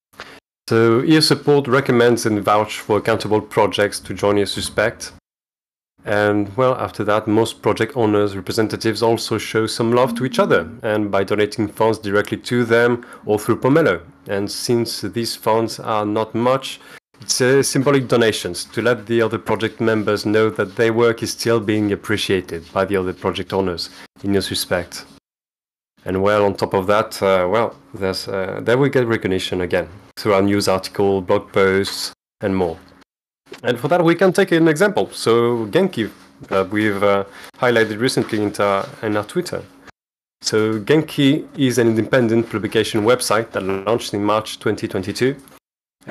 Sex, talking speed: male, 165 wpm